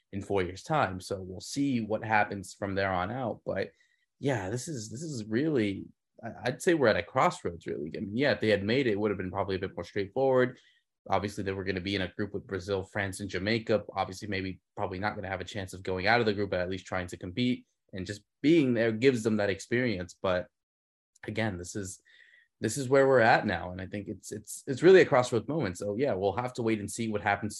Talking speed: 255 wpm